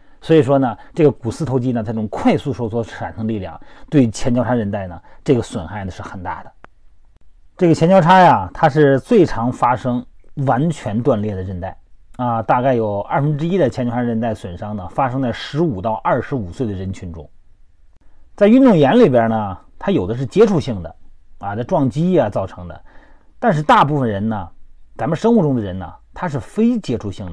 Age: 30-49